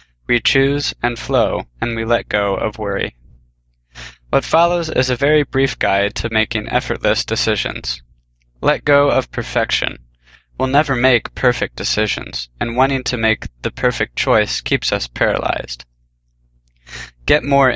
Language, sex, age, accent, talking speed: English, male, 20-39, American, 140 wpm